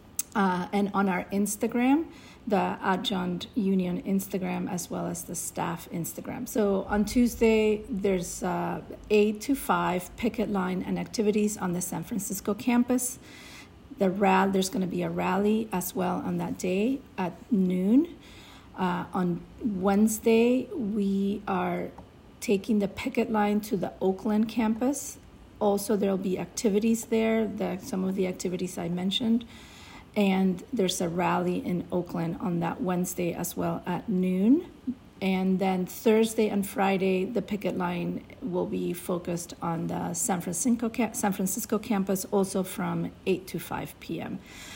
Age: 40-59